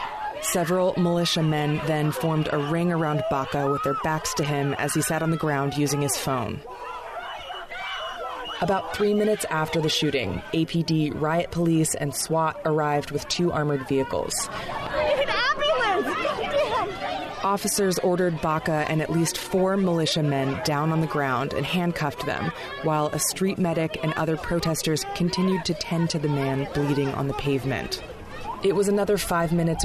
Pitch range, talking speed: 145-175 Hz, 155 wpm